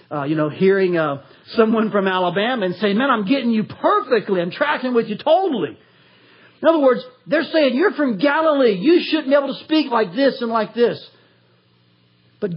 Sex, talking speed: male, 190 wpm